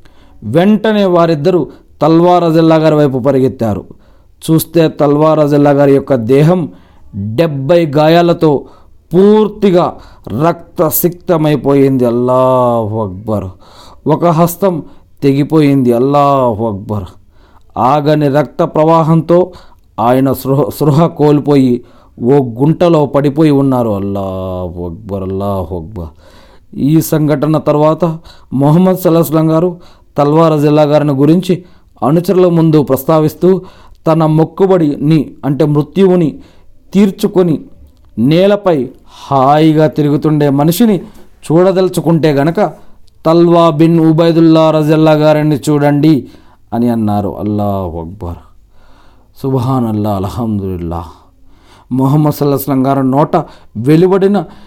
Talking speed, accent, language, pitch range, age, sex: 90 wpm, native, Telugu, 110-165 Hz, 40-59, male